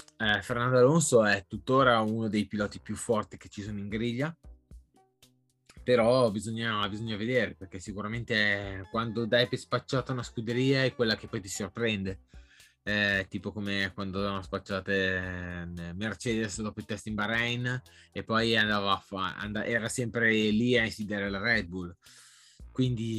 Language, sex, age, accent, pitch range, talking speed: Italian, male, 20-39, native, 95-120 Hz, 150 wpm